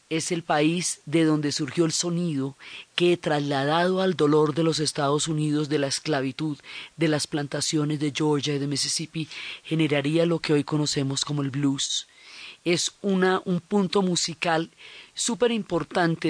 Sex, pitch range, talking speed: female, 155-185 Hz, 150 wpm